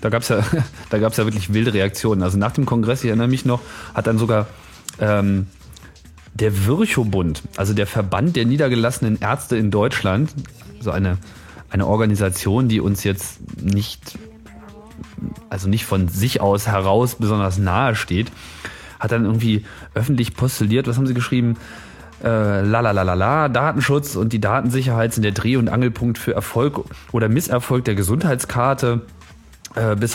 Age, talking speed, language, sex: 30-49, 155 wpm, German, male